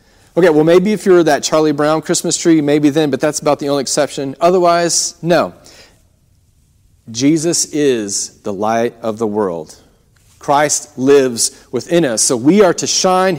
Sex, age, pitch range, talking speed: male, 40-59, 120-170 Hz, 160 wpm